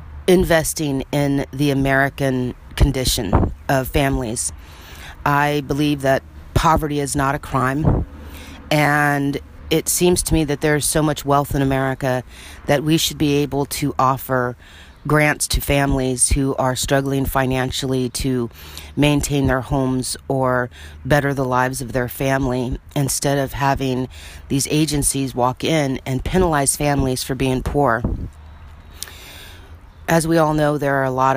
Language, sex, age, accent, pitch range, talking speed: English, female, 40-59, American, 95-145 Hz, 140 wpm